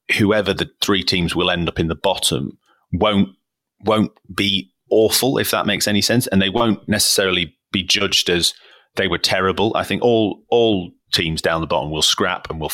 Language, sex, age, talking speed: English, male, 30-49, 195 wpm